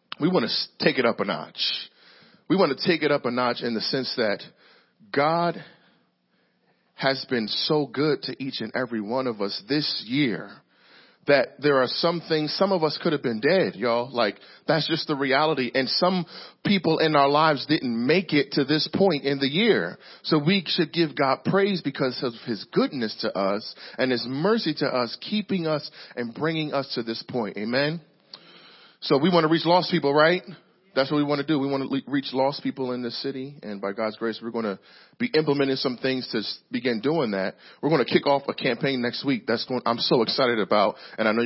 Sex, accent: male, American